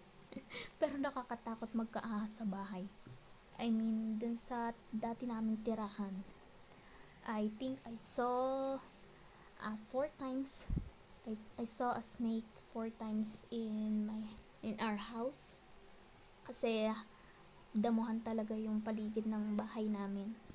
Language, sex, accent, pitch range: Filipino, female, native, 220-245 Hz